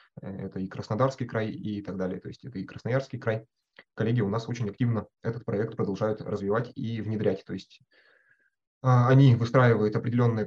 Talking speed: 165 wpm